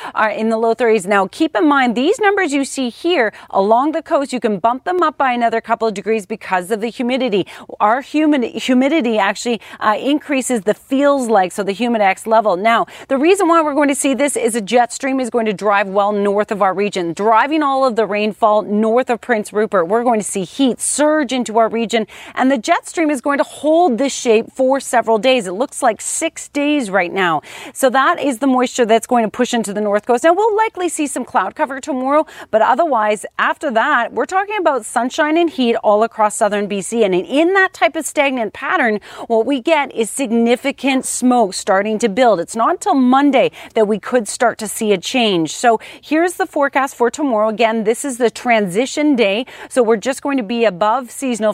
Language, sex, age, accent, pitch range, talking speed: English, female, 30-49, American, 215-280 Hz, 220 wpm